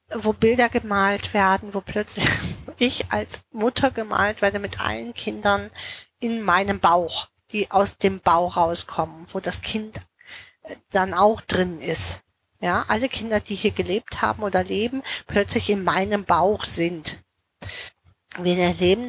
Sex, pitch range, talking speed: female, 185-225 Hz, 140 wpm